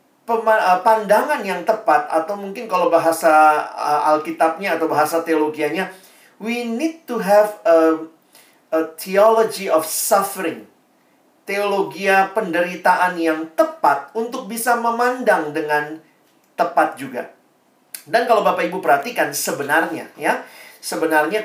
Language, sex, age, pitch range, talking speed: Indonesian, male, 40-59, 160-220 Hz, 110 wpm